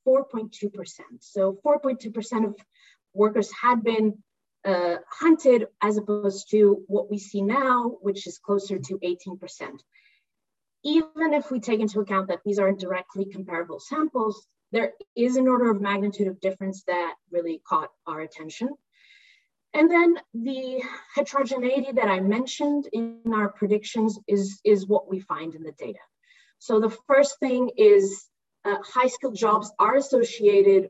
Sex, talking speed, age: female, 145 wpm, 30-49